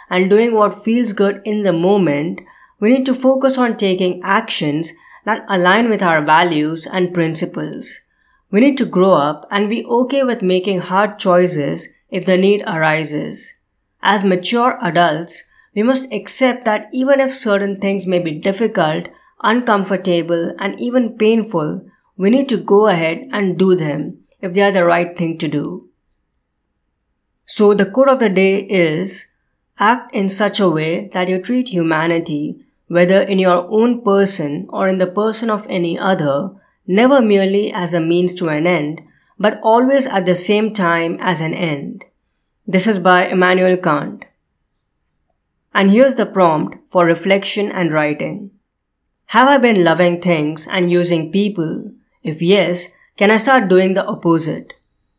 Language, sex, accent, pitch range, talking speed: English, female, Indian, 175-215 Hz, 160 wpm